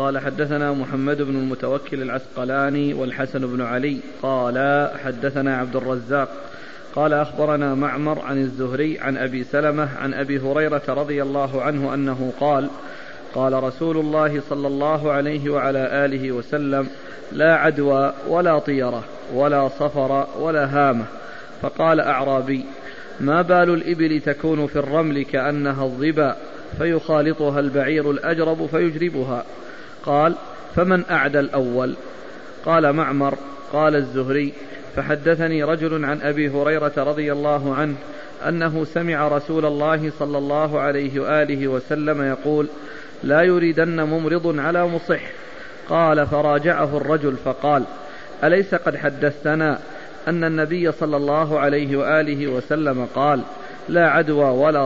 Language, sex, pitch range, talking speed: Arabic, male, 135-155 Hz, 120 wpm